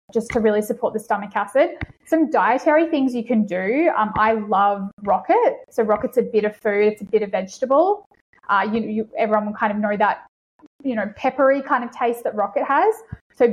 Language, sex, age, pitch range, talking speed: English, female, 20-39, 210-255 Hz, 200 wpm